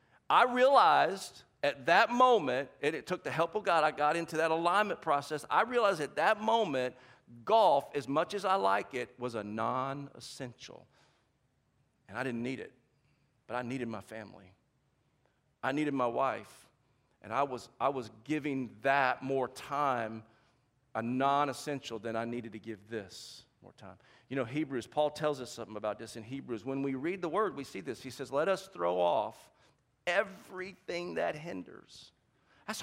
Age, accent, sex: 40-59, American, male